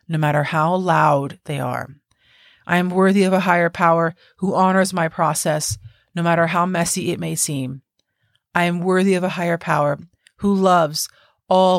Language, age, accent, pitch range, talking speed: English, 30-49, American, 155-185 Hz, 175 wpm